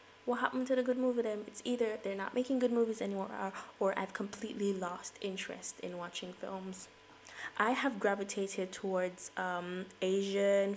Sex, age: female, 20-39